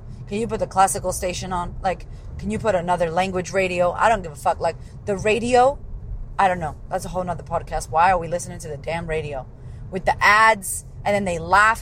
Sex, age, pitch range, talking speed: female, 30-49, 135-210 Hz, 230 wpm